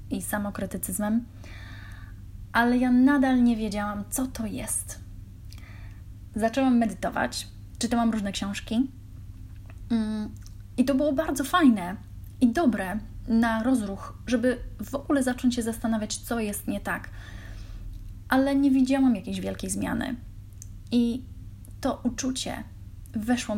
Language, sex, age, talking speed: Polish, female, 10-29, 110 wpm